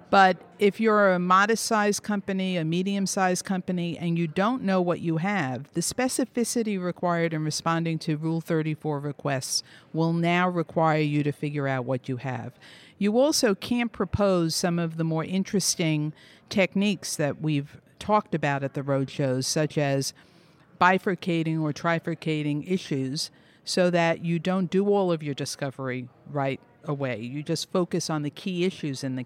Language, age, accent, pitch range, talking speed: English, 50-69, American, 150-190 Hz, 160 wpm